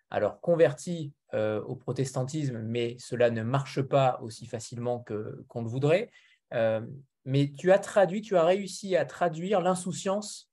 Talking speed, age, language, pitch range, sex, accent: 135 wpm, 20-39, French, 130-180 Hz, male, French